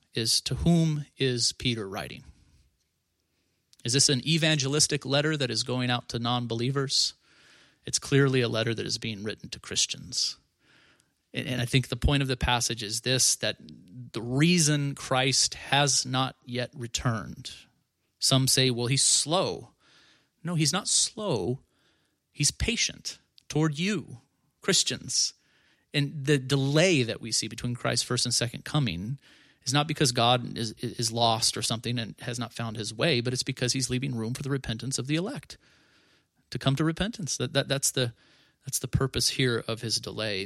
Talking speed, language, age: 170 wpm, English, 30-49